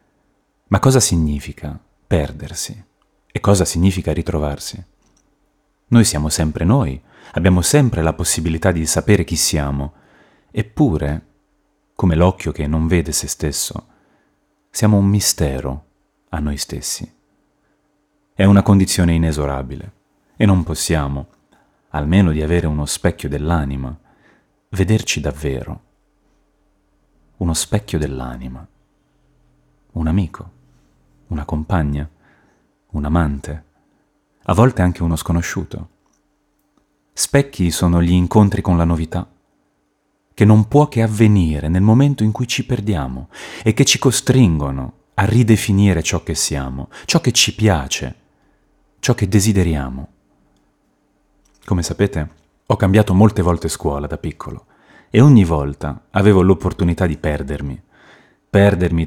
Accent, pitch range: native, 75-100 Hz